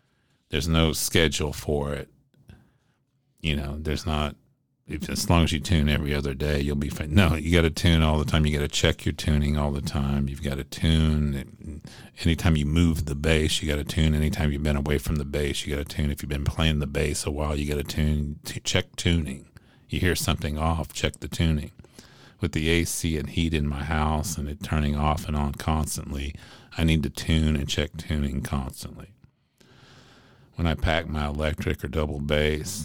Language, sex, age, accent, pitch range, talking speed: English, male, 50-69, American, 75-85 Hz, 205 wpm